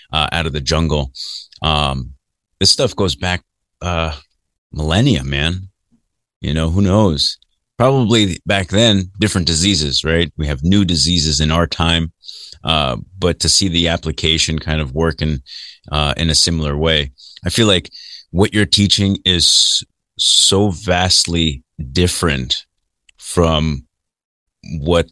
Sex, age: male, 30-49